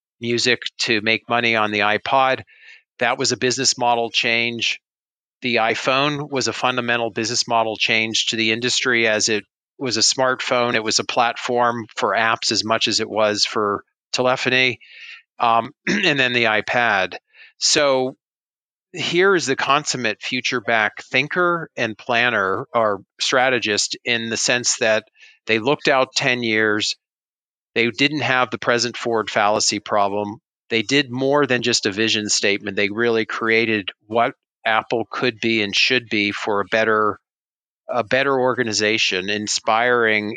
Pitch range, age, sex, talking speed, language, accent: 110-130 Hz, 40-59, male, 150 wpm, English, American